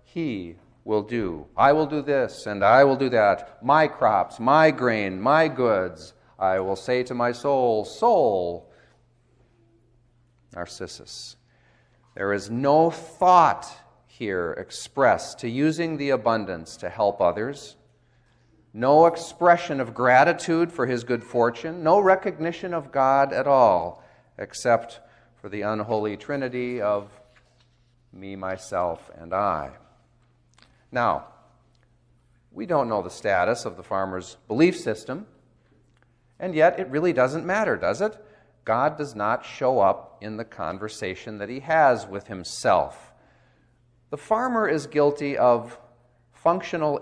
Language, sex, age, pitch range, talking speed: English, male, 40-59, 105-140 Hz, 130 wpm